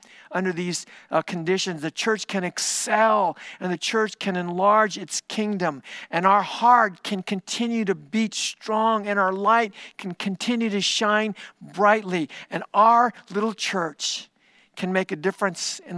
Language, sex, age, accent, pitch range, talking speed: English, male, 50-69, American, 170-210 Hz, 150 wpm